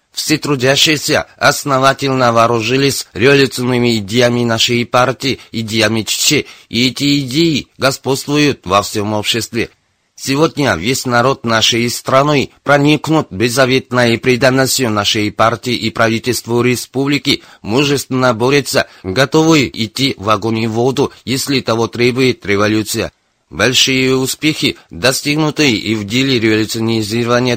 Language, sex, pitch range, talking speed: Russian, male, 115-140 Hz, 110 wpm